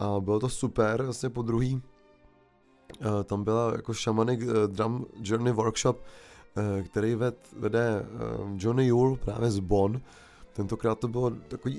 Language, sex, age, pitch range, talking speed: Czech, male, 20-39, 110-125 Hz, 130 wpm